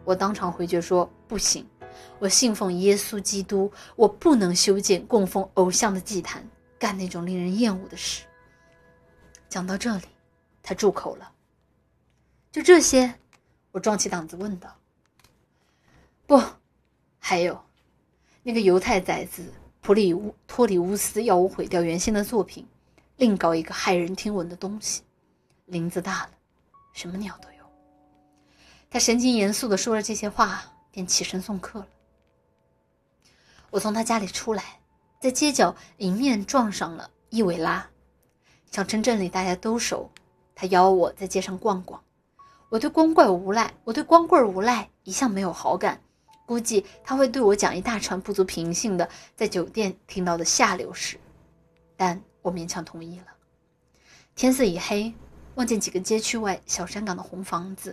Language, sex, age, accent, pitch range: Chinese, female, 20-39, native, 180-225 Hz